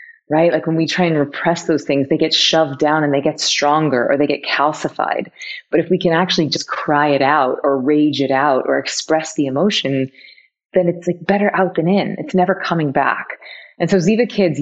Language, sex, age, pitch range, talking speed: English, female, 20-39, 145-175 Hz, 220 wpm